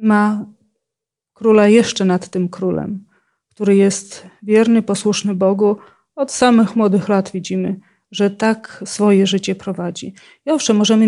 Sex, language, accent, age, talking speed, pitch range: female, Polish, native, 40-59, 130 wpm, 195-220 Hz